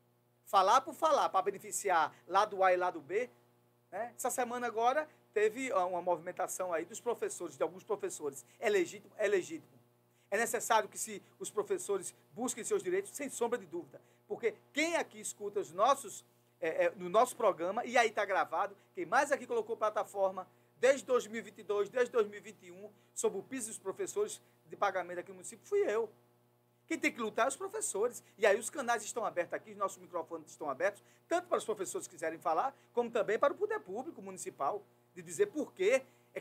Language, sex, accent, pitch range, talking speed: Portuguese, male, Brazilian, 185-290 Hz, 190 wpm